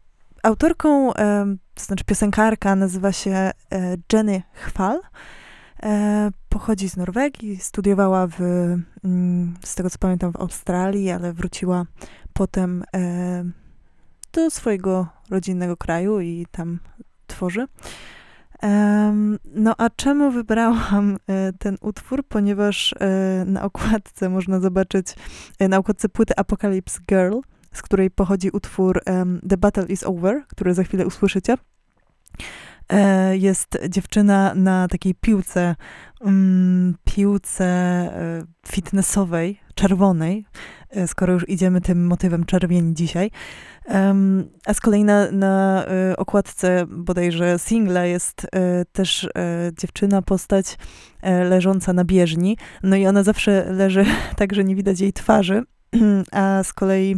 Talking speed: 115 wpm